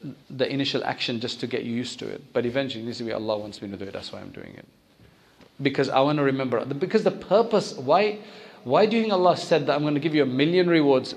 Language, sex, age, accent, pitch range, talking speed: English, male, 40-59, South African, 125-155 Hz, 270 wpm